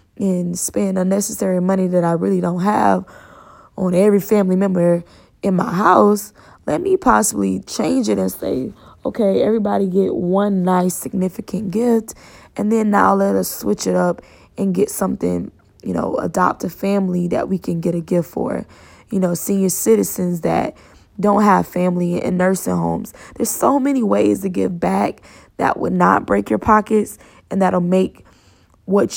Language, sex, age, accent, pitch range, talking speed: English, female, 20-39, American, 170-210 Hz, 165 wpm